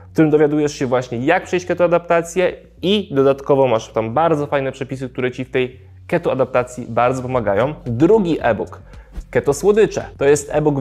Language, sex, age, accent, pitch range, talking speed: Polish, male, 20-39, native, 130-160 Hz, 160 wpm